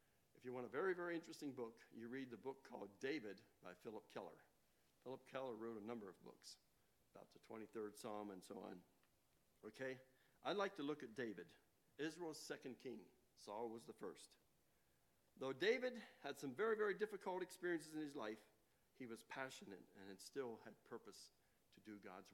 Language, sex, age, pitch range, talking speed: English, male, 60-79, 110-150 Hz, 175 wpm